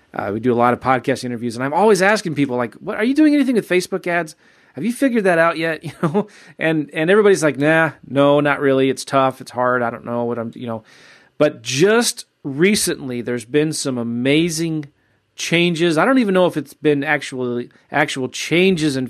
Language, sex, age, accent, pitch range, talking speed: English, male, 30-49, American, 125-155 Hz, 215 wpm